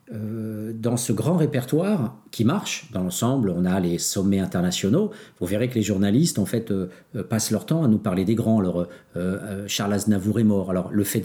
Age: 50-69